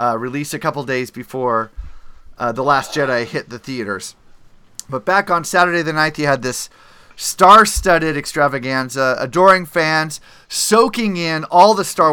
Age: 30-49